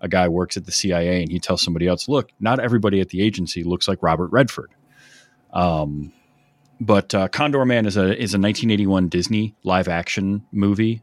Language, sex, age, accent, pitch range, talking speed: English, male, 30-49, American, 85-110 Hz, 190 wpm